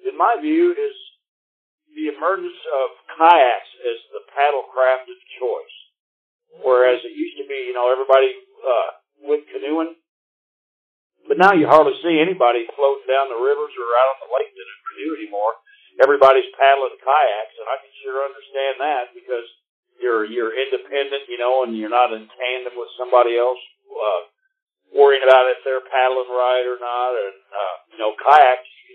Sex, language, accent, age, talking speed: male, English, American, 50-69, 170 wpm